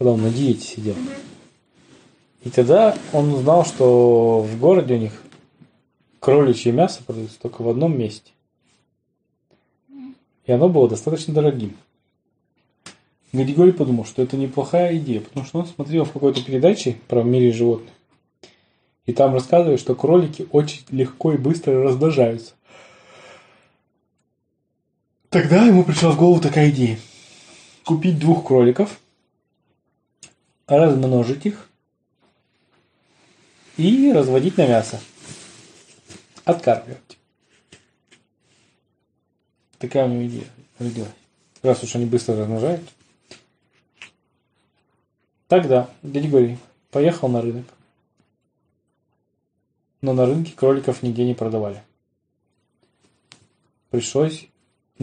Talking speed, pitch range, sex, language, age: 100 wpm, 120-160 Hz, male, Russian, 20-39